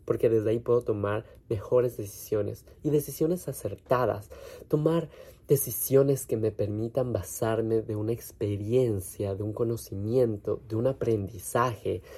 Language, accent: Spanish, Mexican